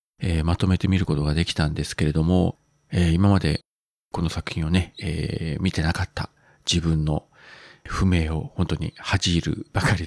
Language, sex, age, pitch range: Japanese, male, 40-59, 85-130 Hz